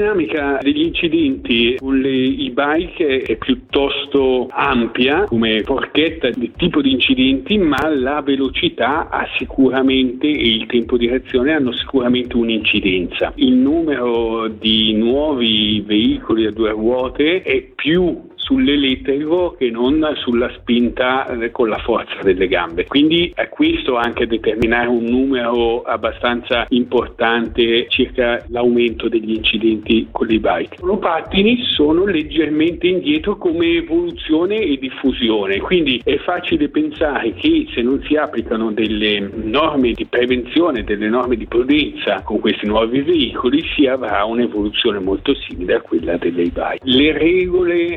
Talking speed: 130 wpm